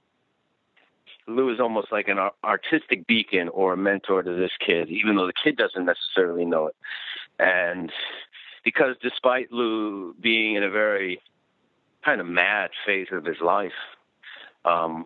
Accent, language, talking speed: American, English, 150 wpm